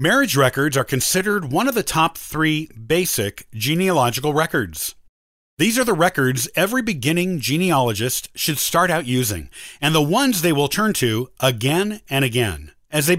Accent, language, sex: American, English, male